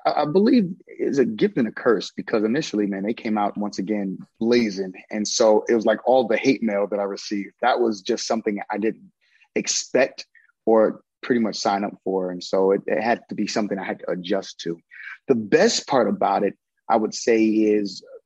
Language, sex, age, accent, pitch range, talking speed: English, male, 30-49, American, 100-115 Hz, 210 wpm